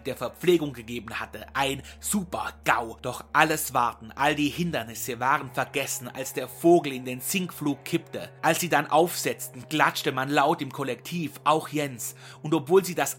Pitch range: 135-170 Hz